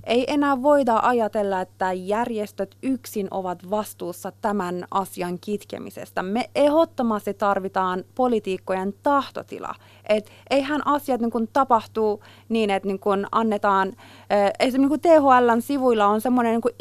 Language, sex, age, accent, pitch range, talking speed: Finnish, female, 30-49, native, 210-295 Hz, 120 wpm